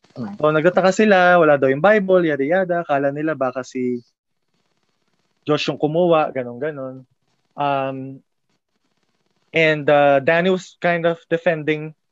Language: Filipino